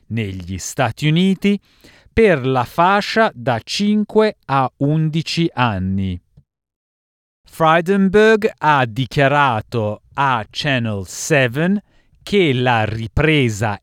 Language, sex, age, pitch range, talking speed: Italian, male, 50-69, 115-170 Hz, 85 wpm